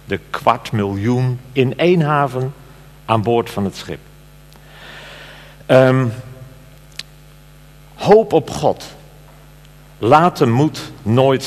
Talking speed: 100 wpm